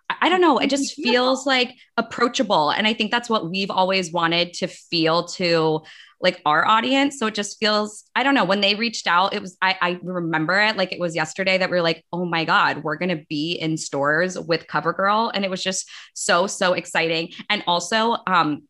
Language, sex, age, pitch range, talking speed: English, female, 20-39, 170-230 Hz, 215 wpm